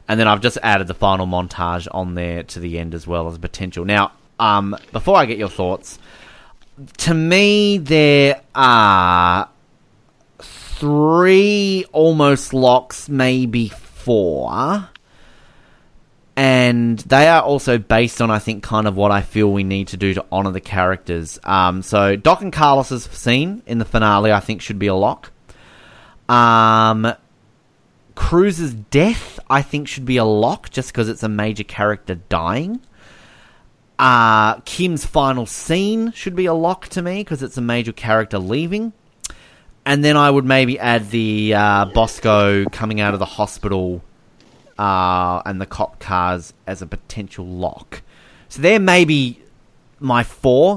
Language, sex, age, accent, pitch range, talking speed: English, male, 30-49, Australian, 100-140 Hz, 155 wpm